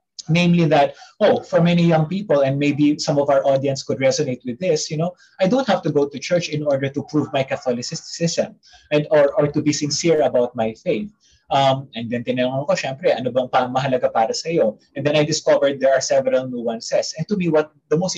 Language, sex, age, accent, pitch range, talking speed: Filipino, male, 20-39, native, 135-190 Hz, 190 wpm